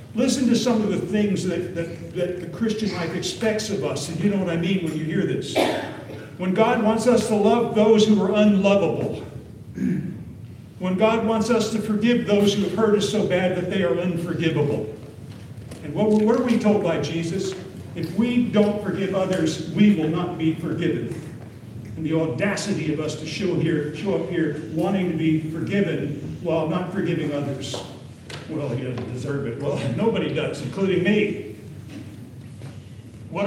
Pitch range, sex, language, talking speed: 145-195 Hz, male, English, 180 wpm